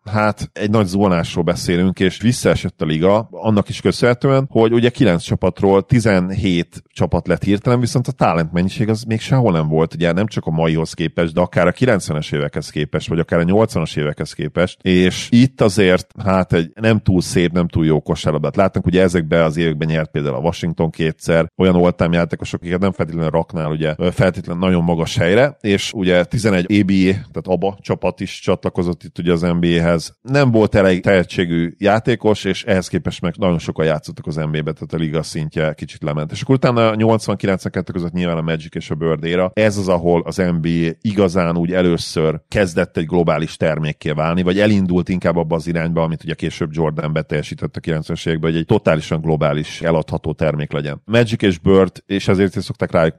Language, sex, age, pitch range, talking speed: Hungarian, male, 40-59, 80-100 Hz, 190 wpm